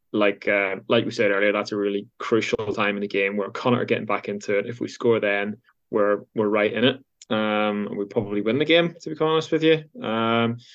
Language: English